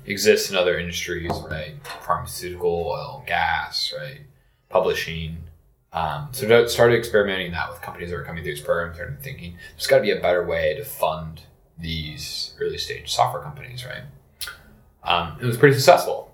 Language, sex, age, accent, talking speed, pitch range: English, male, 20-39, American, 170 wpm, 80-125 Hz